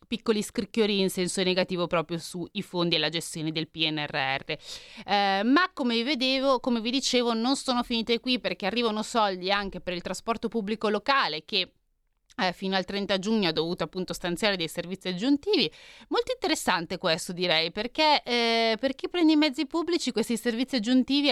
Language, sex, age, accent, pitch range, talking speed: Italian, female, 30-49, native, 170-225 Hz, 170 wpm